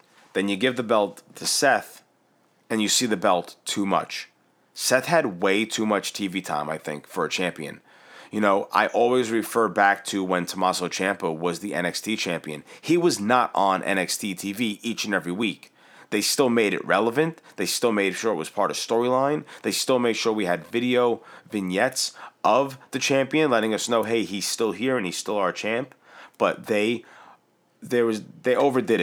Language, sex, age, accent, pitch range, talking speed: English, male, 30-49, American, 95-125 Hz, 190 wpm